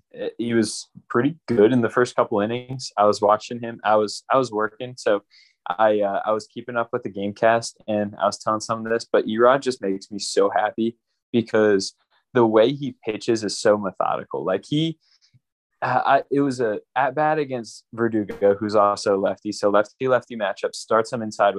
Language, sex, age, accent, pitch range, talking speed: English, male, 20-39, American, 100-120 Hz, 195 wpm